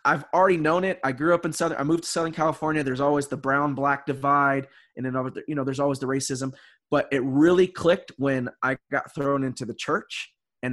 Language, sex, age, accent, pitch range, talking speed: English, male, 20-39, American, 125-150 Hz, 225 wpm